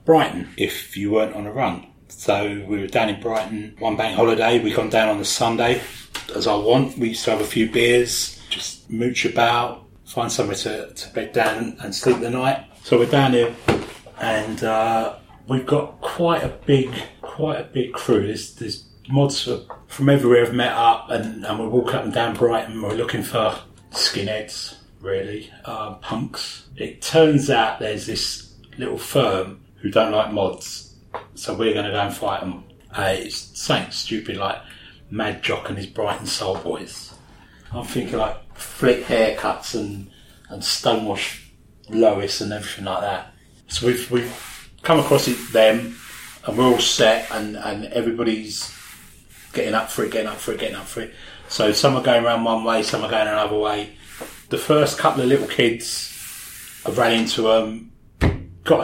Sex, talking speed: male, 180 wpm